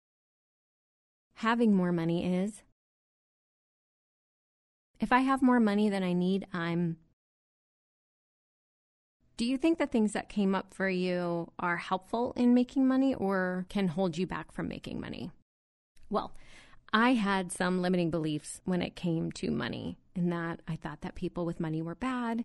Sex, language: female, English